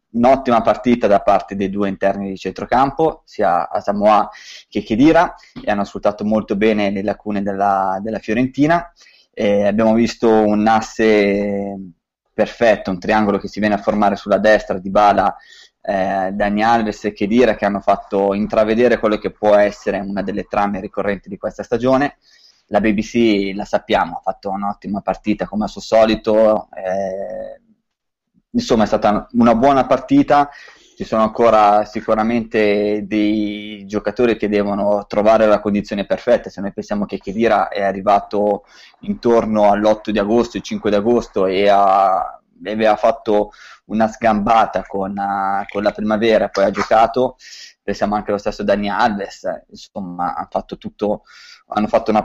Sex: male